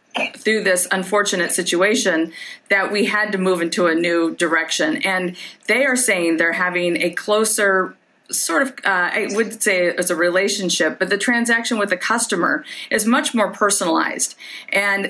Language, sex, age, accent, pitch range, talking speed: English, female, 40-59, American, 175-215 Hz, 165 wpm